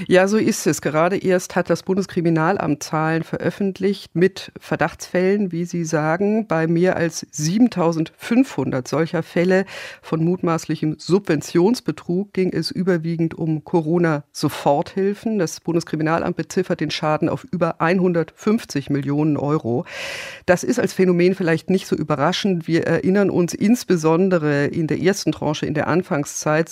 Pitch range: 155-185 Hz